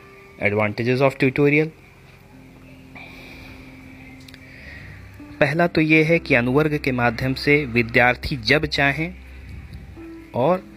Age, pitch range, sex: 30-49, 105-145 Hz, male